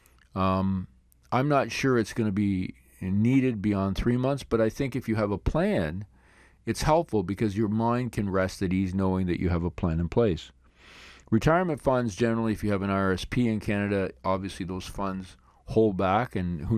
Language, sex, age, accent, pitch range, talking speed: English, male, 40-59, American, 85-110 Hz, 195 wpm